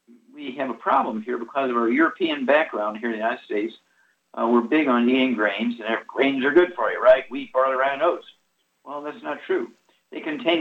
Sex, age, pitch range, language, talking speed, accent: male, 50-69, 115-135 Hz, English, 220 wpm, American